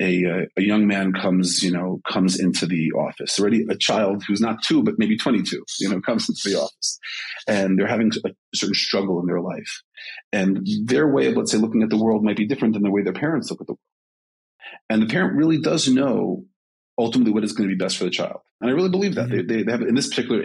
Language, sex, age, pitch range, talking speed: English, male, 40-59, 95-125 Hz, 250 wpm